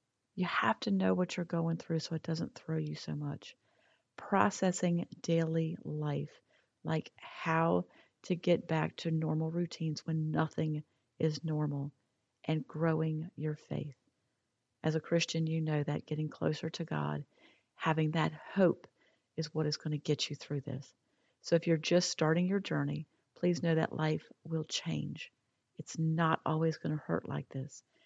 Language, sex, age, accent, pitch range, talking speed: English, female, 40-59, American, 150-175 Hz, 165 wpm